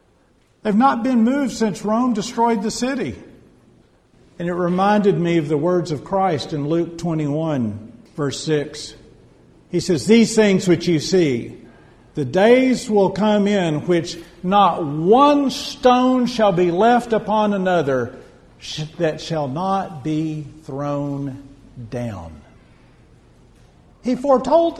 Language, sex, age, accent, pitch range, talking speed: English, male, 50-69, American, 145-210 Hz, 125 wpm